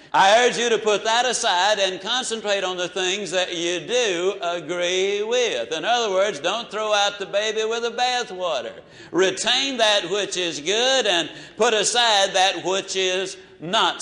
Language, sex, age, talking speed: English, male, 60-79, 170 wpm